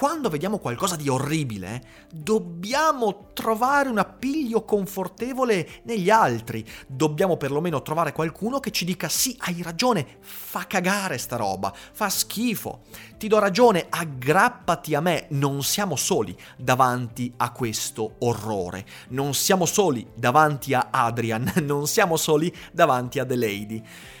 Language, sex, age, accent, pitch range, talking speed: Italian, male, 30-49, native, 135-210 Hz, 135 wpm